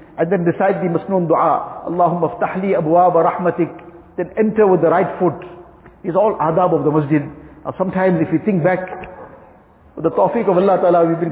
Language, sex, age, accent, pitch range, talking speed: English, male, 50-69, Indian, 165-210 Hz, 190 wpm